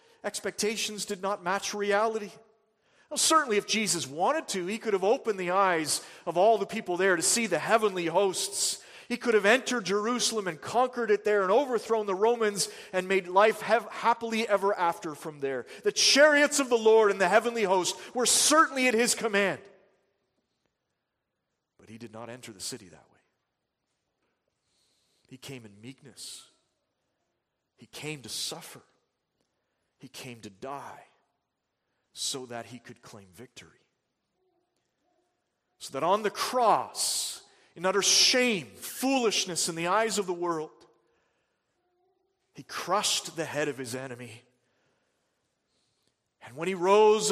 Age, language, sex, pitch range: 40-59, English, male, 150-210 Hz